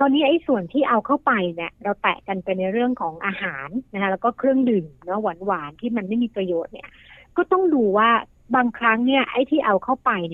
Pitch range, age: 185-250 Hz, 60-79